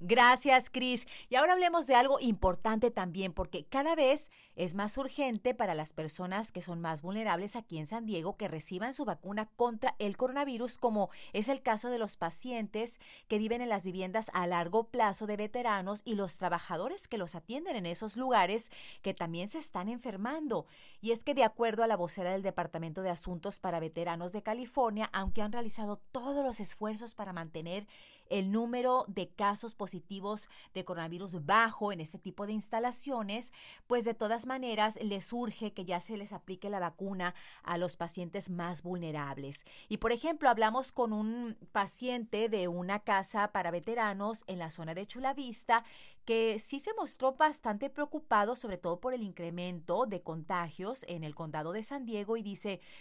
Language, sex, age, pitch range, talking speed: Spanish, female, 30-49, 180-240 Hz, 180 wpm